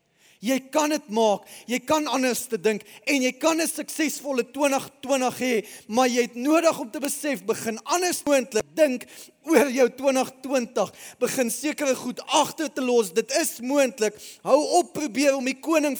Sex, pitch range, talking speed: male, 200-275 Hz, 170 wpm